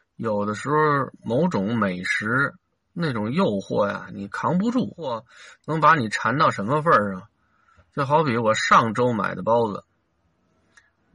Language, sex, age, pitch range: Chinese, male, 50-69, 100-140 Hz